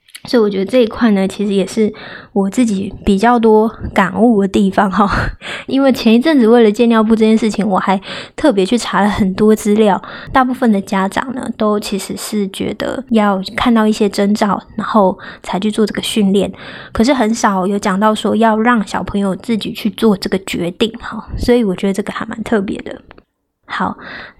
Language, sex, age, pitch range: Chinese, female, 20-39, 200-230 Hz